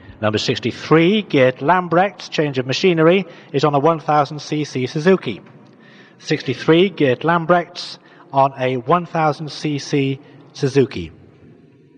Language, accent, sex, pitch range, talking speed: English, British, male, 130-165 Hz, 95 wpm